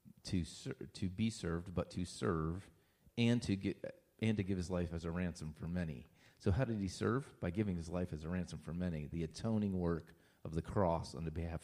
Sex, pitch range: male, 90-120 Hz